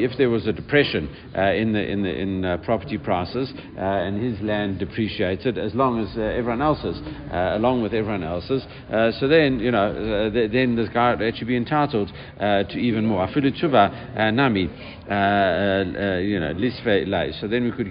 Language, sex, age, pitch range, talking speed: English, male, 60-79, 95-115 Hz, 195 wpm